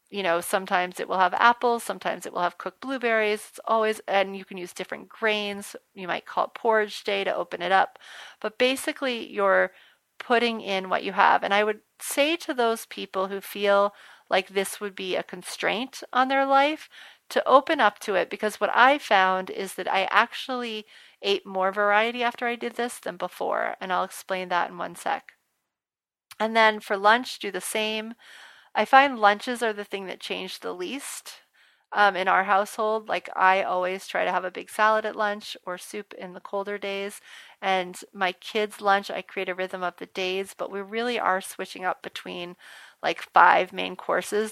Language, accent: English, American